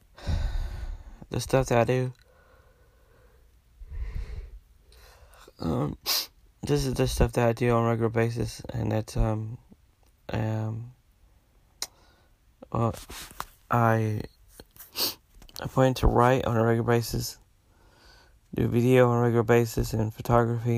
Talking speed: 115 wpm